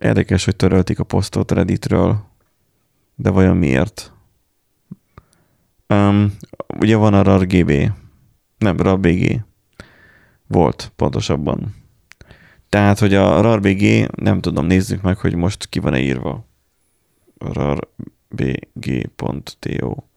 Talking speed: 90 wpm